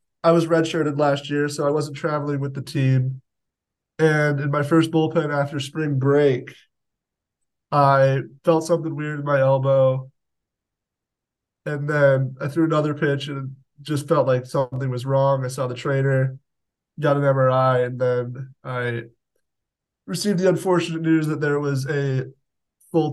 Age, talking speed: 20-39, 155 wpm